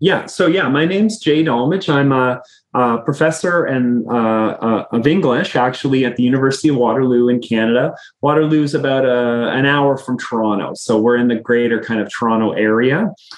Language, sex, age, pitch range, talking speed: English, male, 30-49, 120-155 Hz, 185 wpm